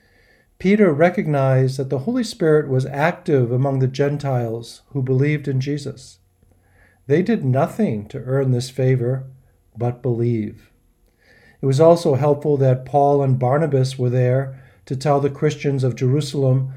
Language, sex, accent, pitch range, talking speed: English, male, American, 120-145 Hz, 145 wpm